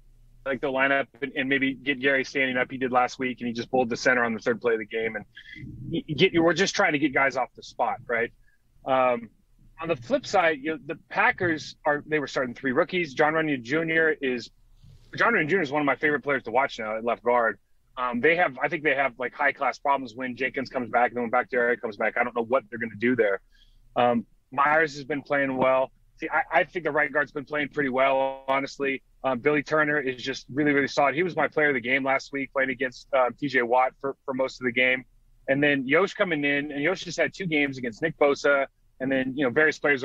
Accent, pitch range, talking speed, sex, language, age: American, 125-150 Hz, 255 wpm, male, English, 30-49